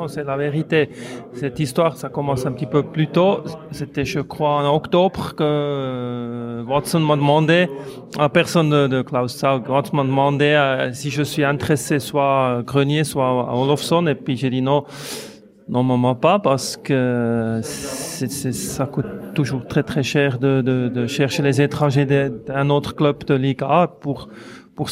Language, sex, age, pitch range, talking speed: French, male, 30-49, 130-150 Hz, 175 wpm